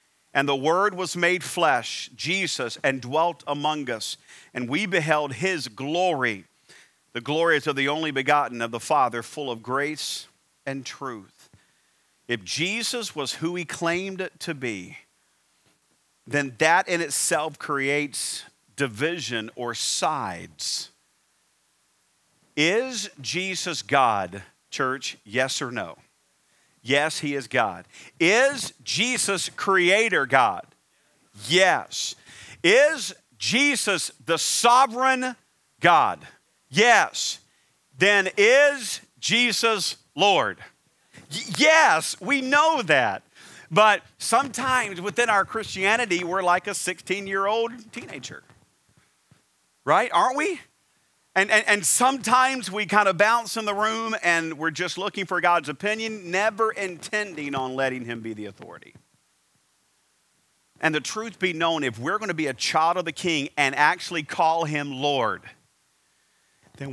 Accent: American